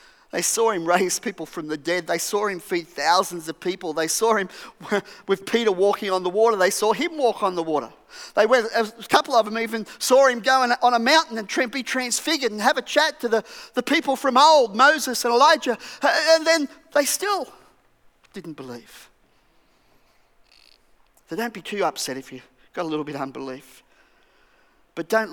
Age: 40-59